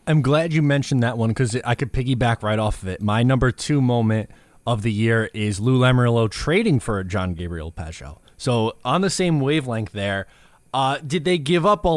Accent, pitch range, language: American, 110-140 Hz, English